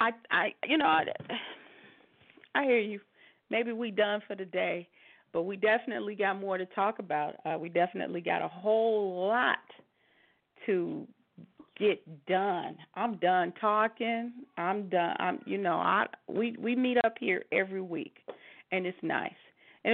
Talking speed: 155 wpm